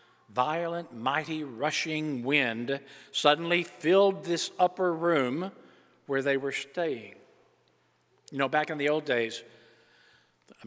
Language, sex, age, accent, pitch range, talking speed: English, male, 50-69, American, 130-165 Hz, 120 wpm